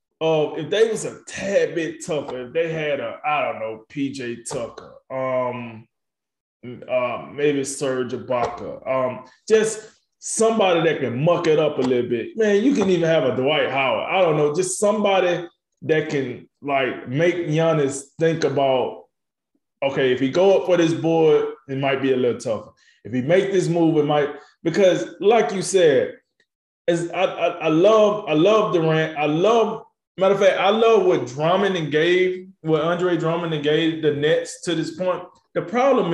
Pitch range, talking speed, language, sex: 140-200 Hz, 180 wpm, English, male